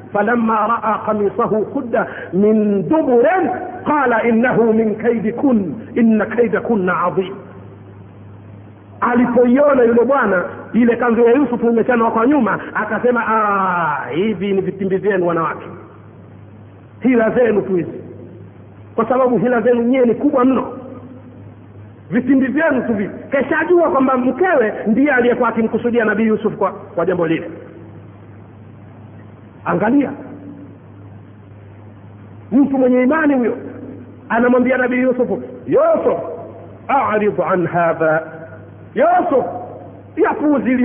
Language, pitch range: Swahili, 175-250 Hz